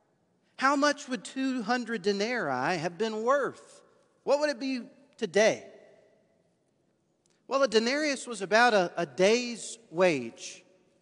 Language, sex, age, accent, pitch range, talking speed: English, male, 40-59, American, 175-255 Hz, 120 wpm